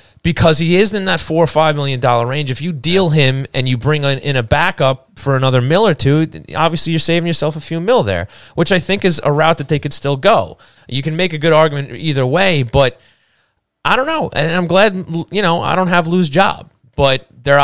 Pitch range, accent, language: 110-155 Hz, American, English